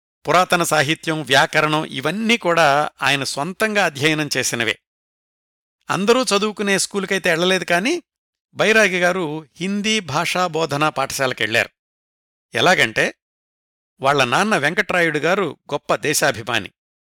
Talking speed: 85 wpm